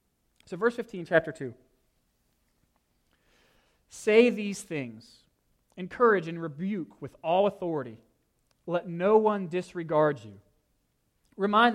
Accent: American